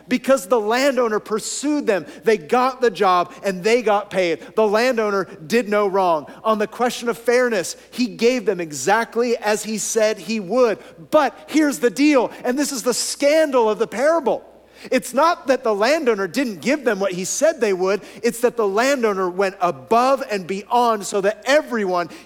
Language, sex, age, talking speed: English, male, 40-59, 185 wpm